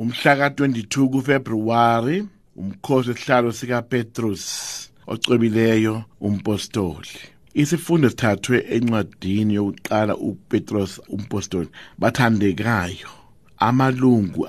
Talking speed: 85 wpm